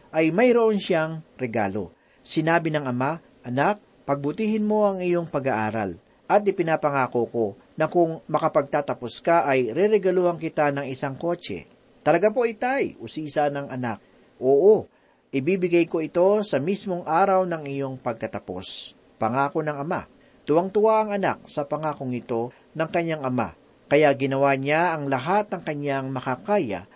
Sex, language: male, Filipino